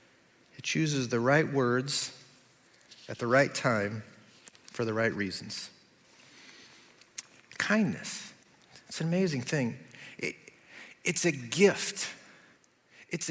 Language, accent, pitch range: English, American, 125-170 Hz